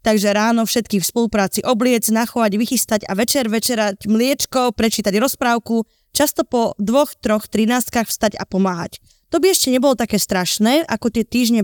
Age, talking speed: 20-39, 160 wpm